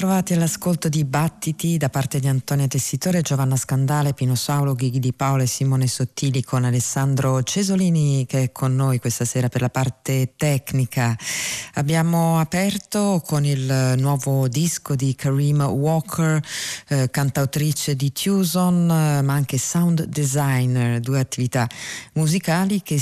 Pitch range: 125-150 Hz